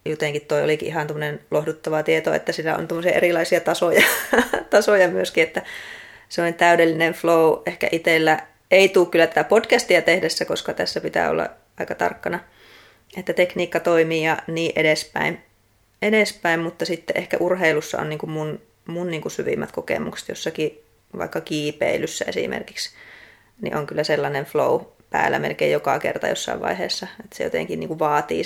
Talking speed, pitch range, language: 155 wpm, 155-190 Hz, Finnish